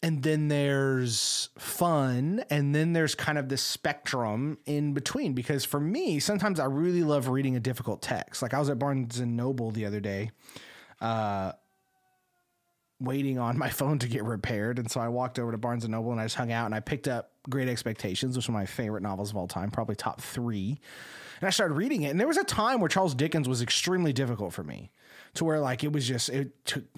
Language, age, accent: English, 30-49, American